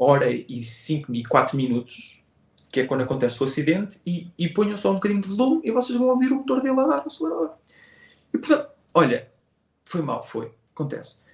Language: Portuguese